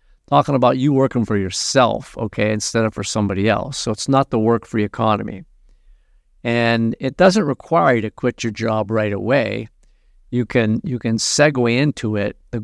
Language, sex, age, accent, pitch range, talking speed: English, male, 50-69, American, 110-125 Hz, 175 wpm